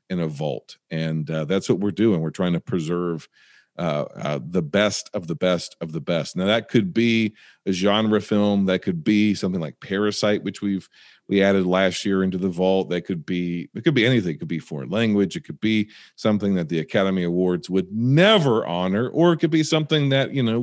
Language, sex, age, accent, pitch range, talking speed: English, male, 40-59, American, 85-105 Hz, 220 wpm